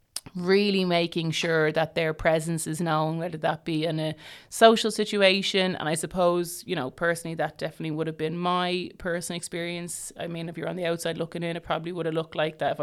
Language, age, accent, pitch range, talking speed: English, 30-49, Irish, 165-180 Hz, 215 wpm